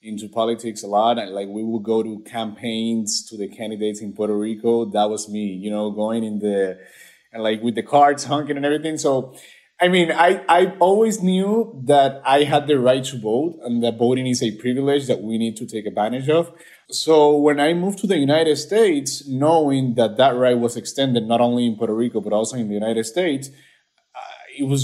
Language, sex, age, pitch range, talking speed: English, male, 20-39, 115-150 Hz, 215 wpm